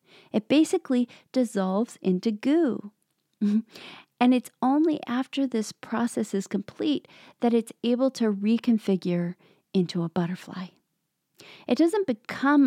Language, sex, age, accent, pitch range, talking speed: English, female, 40-59, American, 190-245 Hz, 115 wpm